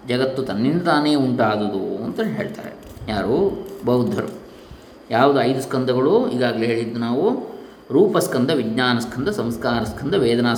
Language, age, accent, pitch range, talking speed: Kannada, 20-39, native, 110-135 Hz, 110 wpm